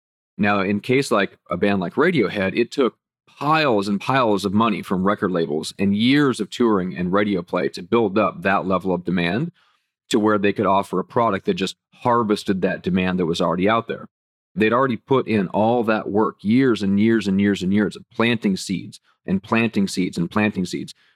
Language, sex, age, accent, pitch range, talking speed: English, male, 40-59, American, 95-110 Hz, 205 wpm